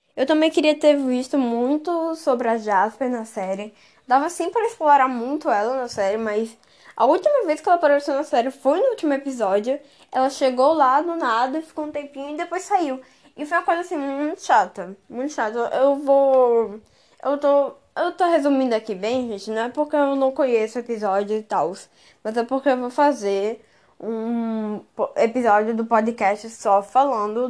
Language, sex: Portuguese, female